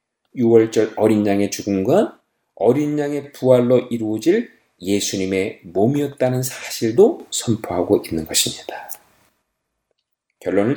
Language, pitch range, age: Korean, 115-160 Hz, 40-59